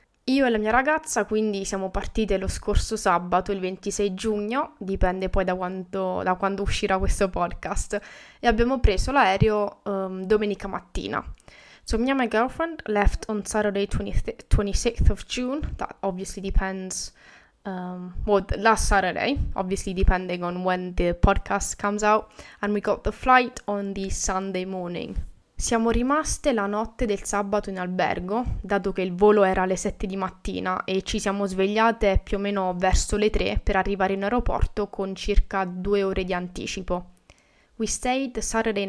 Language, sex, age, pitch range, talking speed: English, female, 20-39, 190-220 Hz, 155 wpm